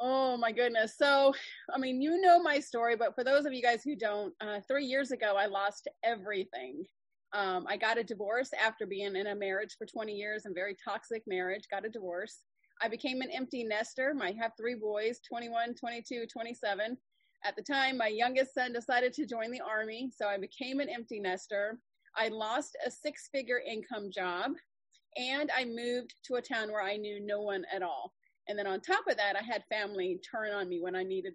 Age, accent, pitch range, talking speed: 30-49, American, 205-265 Hz, 205 wpm